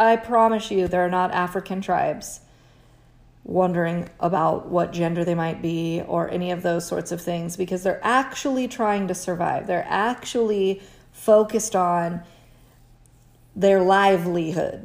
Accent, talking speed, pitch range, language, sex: American, 135 wpm, 175-200 Hz, English, female